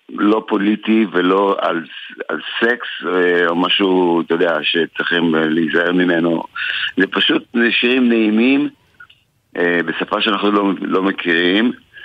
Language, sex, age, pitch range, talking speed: Hebrew, male, 50-69, 85-105 Hz, 110 wpm